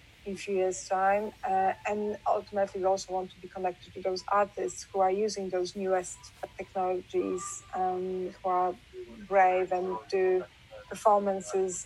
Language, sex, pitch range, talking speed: English, female, 185-205 Hz, 150 wpm